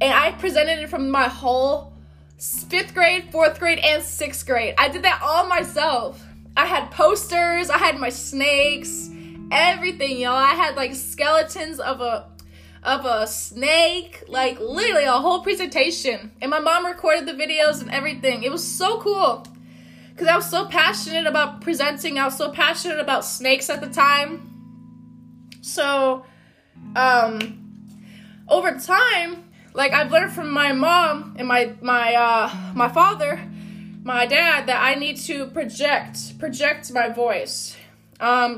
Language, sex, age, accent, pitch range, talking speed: English, female, 20-39, American, 240-320 Hz, 150 wpm